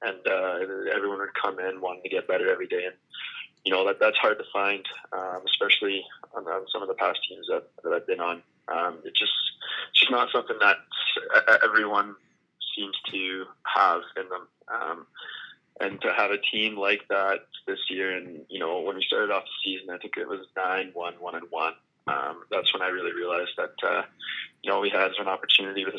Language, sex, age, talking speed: English, male, 20-39, 210 wpm